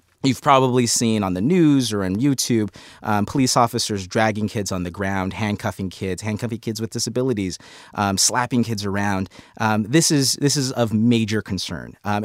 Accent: American